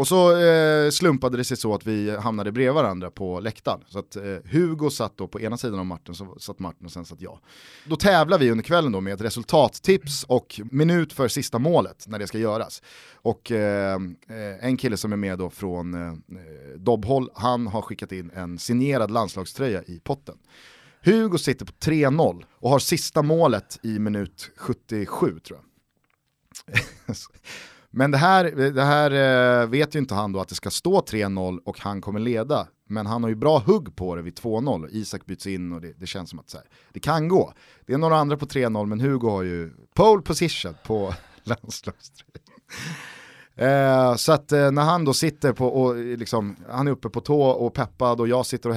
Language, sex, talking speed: Swedish, male, 200 wpm